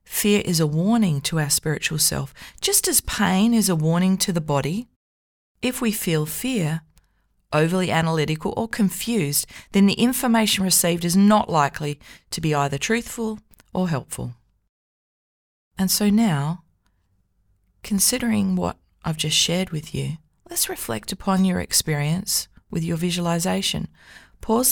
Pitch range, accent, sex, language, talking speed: 115-185 Hz, Australian, female, English, 140 wpm